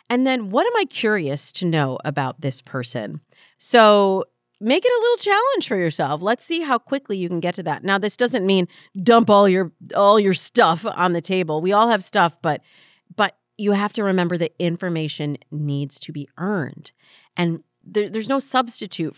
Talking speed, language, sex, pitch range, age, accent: 195 wpm, English, female, 150-205 Hz, 40-59, American